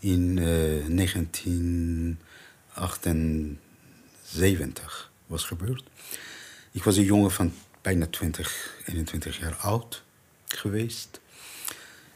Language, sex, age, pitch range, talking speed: Dutch, male, 50-69, 85-110 Hz, 80 wpm